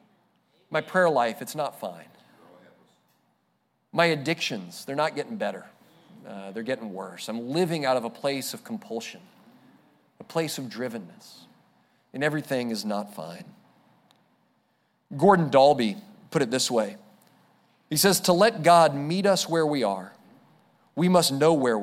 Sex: male